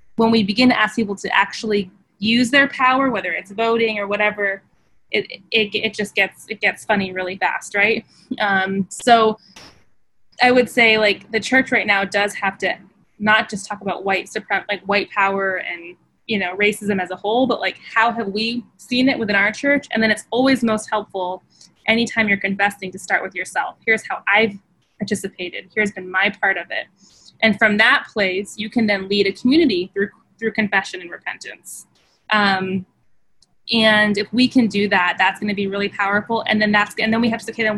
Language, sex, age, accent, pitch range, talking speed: English, female, 20-39, American, 200-225 Hz, 200 wpm